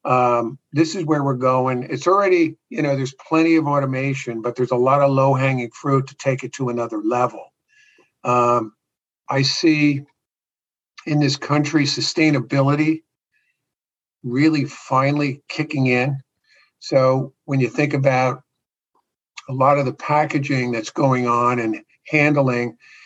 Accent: American